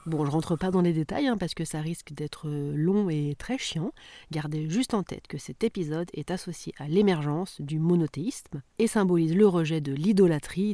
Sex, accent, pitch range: female, French, 145-195 Hz